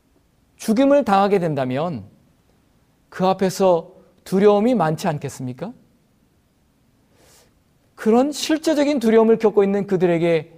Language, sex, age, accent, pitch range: Korean, male, 40-59, native, 150-200 Hz